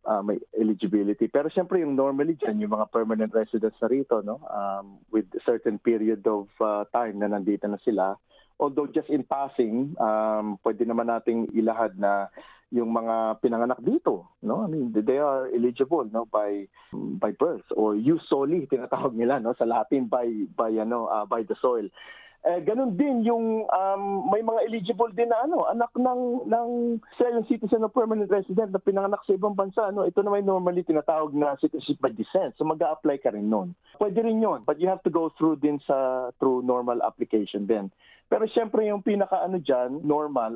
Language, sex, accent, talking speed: English, male, Filipino, 185 wpm